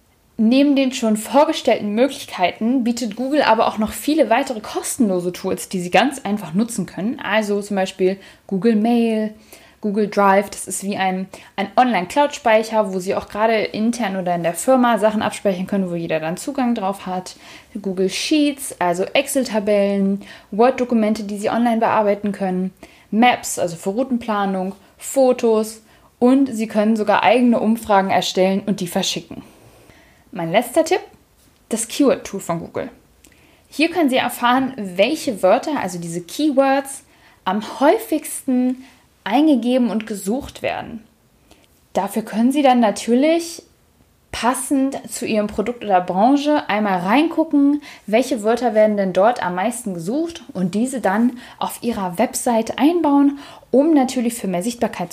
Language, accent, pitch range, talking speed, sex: German, German, 195-255 Hz, 145 wpm, female